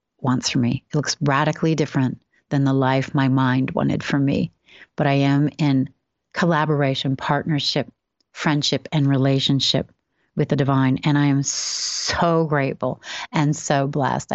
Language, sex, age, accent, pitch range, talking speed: English, female, 40-59, American, 135-160 Hz, 145 wpm